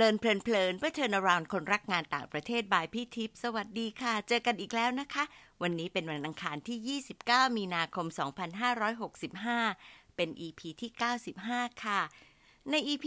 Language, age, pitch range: Thai, 60-79, 175-245 Hz